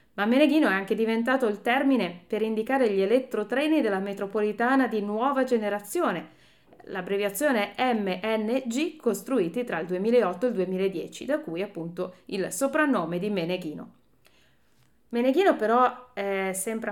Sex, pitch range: female, 185-250 Hz